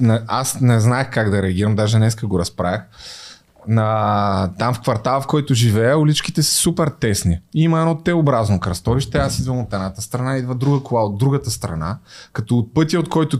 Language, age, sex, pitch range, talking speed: Bulgarian, 20-39, male, 115-155 Hz, 185 wpm